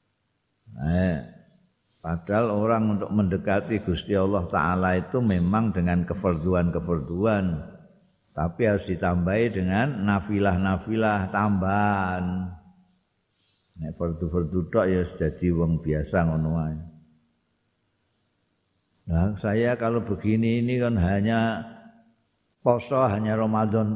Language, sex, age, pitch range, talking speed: Indonesian, male, 50-69, 85-110 Hz, 90 wpm